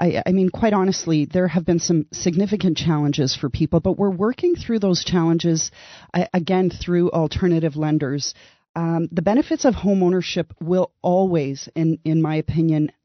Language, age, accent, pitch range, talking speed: English, 40-59, American, 155-185 Hz, 160 wpm